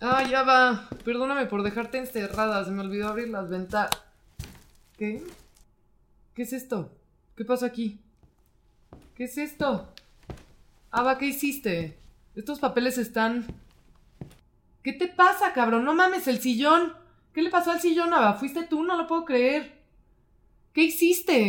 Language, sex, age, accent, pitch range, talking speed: Spanish, female, 20-39, Mexican, 230-330 Hz, 140 wpm